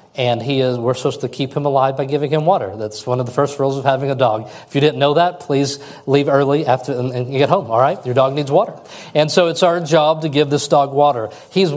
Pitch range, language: 130-160 Hz, English